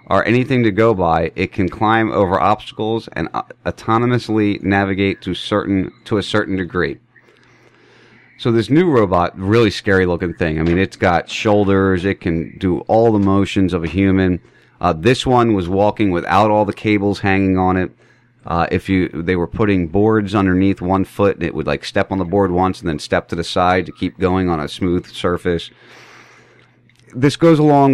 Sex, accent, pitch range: male, American, 90-115 Hz